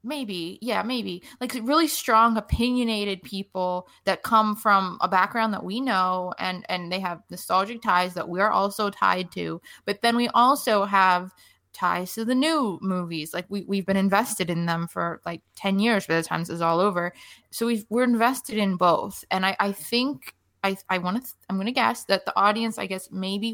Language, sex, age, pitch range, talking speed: English, female, 20-39, 180-215 Hz, 205 wpm